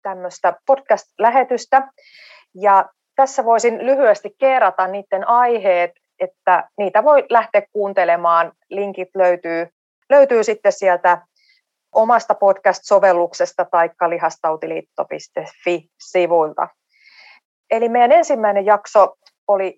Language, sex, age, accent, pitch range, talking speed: Finnish, female, 30-49, native, 170-215 Hz, 85 wpm